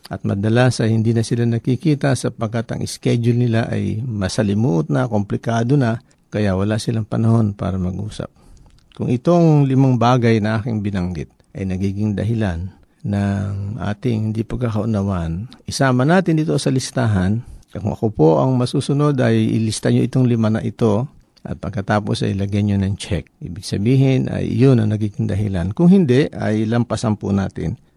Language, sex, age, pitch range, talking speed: Filipino, male, 50-69, 100-125 Hz, 160 wpm